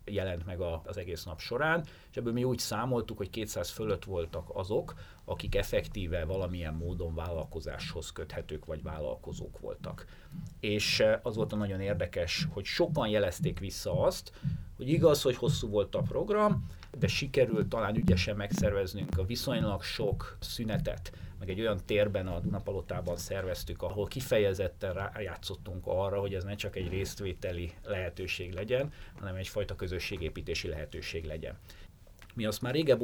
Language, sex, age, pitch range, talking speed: Hungarian, male, 30-49, 90-110 Hz, 145 wpm